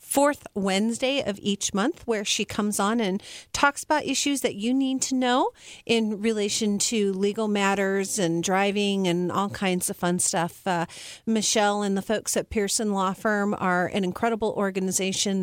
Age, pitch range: 40-59, 190-235 Hz